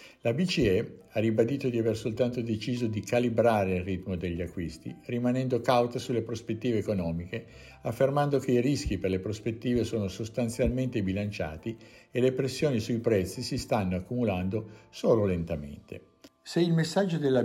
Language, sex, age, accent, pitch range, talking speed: Italian, male, 50-69, native, 100-125 Hz, 150 wpm